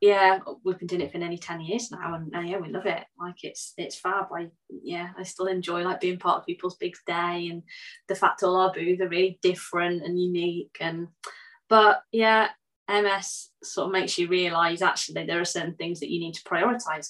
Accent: British